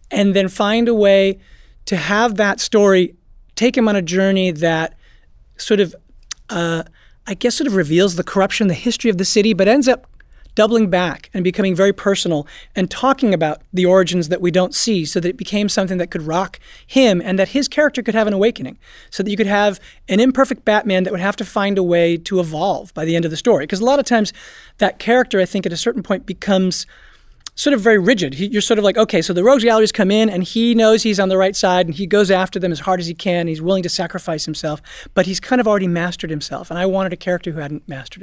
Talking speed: 245 wpm